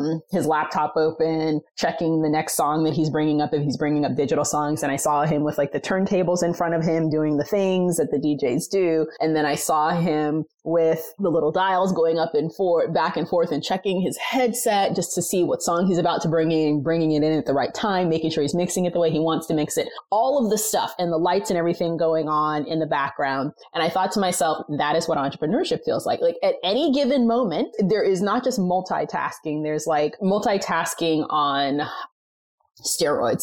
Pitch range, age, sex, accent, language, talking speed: 155-180 Hz, 20-39, female, American, English, 225 wpm